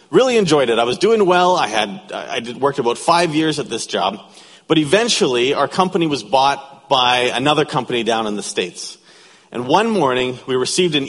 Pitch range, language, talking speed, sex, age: 125-180 Hz, English, 200 wpm, male, 40-59